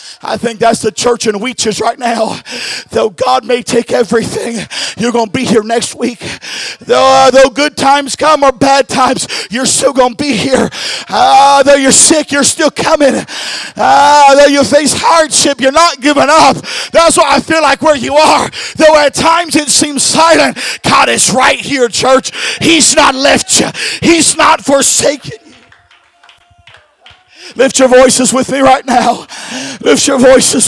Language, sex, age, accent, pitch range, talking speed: English, male, 50-69, American, 245-300 Hz, 170 wpm